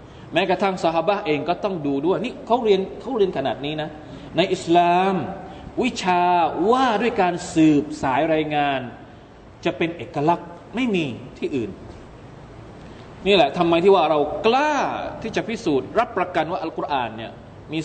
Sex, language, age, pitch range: male, Thai, 20-39, 150-200 Hz